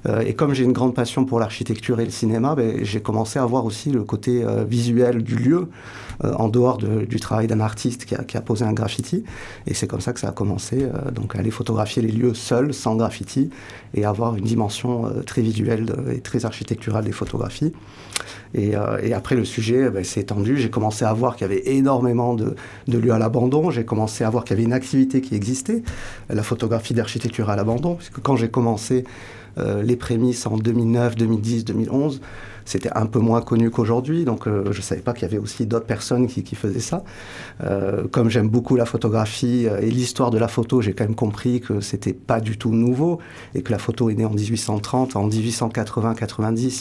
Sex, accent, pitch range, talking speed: male, French, 110-125 Hz, 220 wpm